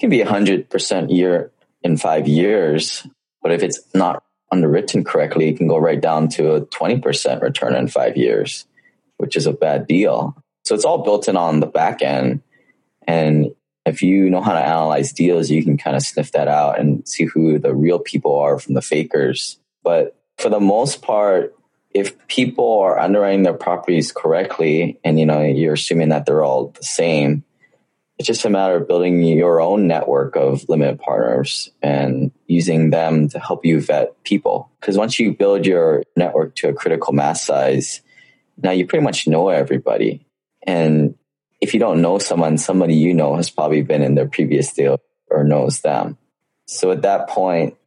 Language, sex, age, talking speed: English, male, 20-39, 185 wpm